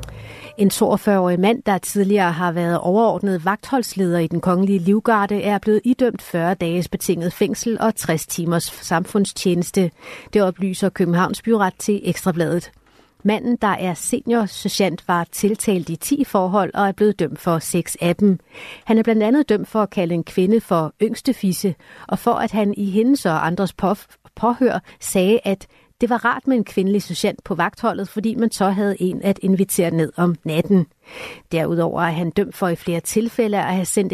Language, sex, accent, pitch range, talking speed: Danish, female, native, 170-210 Hz, 180 wpm